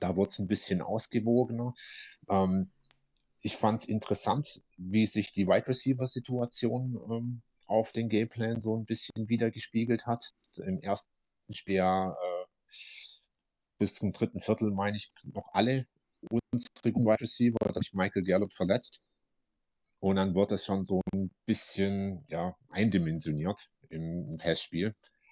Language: German